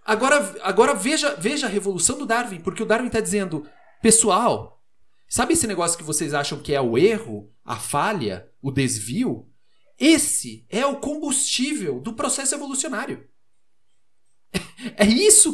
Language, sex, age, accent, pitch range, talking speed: Portuguese, male, 40-59, Brazilian, 145-235 Hz, 145 wpm